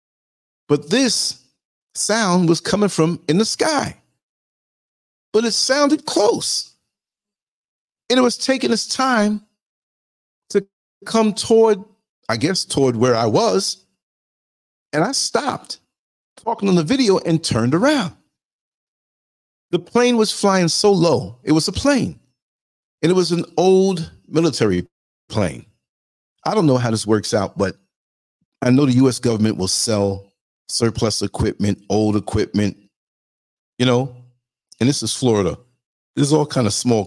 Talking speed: 140 wpm